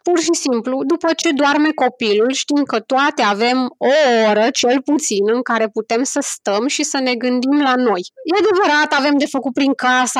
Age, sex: 20-39, female